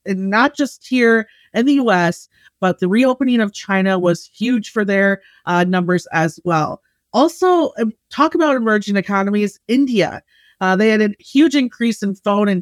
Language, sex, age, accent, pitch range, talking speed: English, female, 30-49, American, 185-230 Hz, 165 wpm